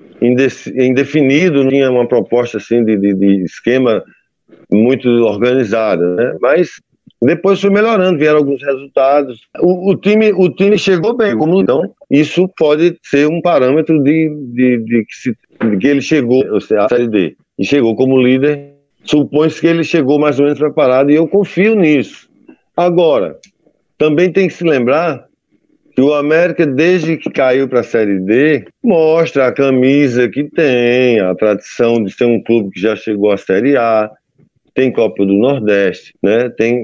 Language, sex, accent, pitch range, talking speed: Portuguese, male, Brazilian, 125-160 Hz, 165 wpm